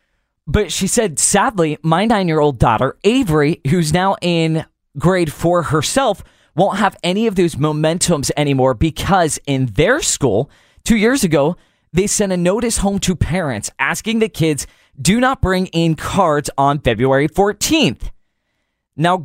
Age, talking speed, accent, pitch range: 20-39, 145 wpm, American, 150-205 Hz